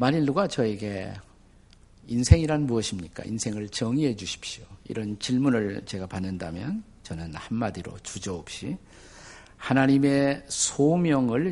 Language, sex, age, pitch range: Korean, male, 50-69, 100-145 Hz